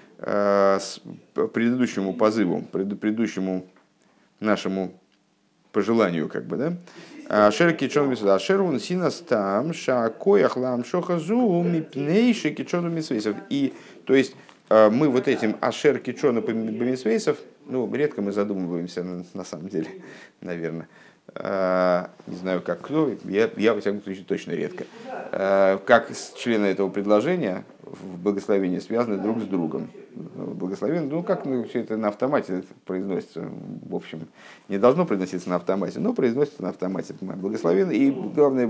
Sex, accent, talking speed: male, native, 110 wpm